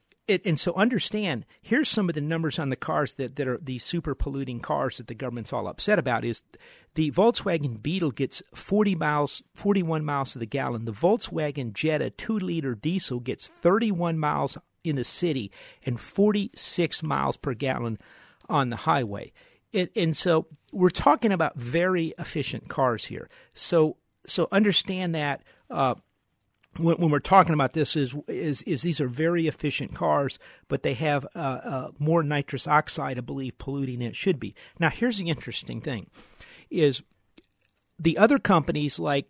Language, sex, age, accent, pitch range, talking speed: English, male, 50-69, American, 135-170 Hz, 170 wpm